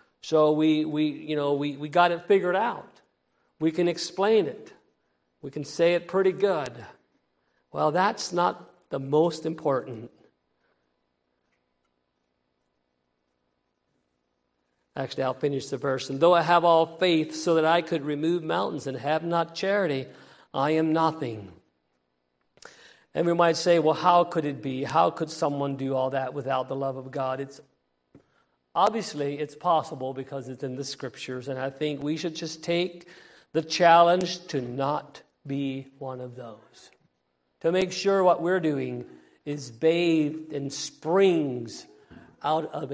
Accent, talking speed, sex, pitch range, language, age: American, 150 wpm, male, 120-170 Hz, English, 50-69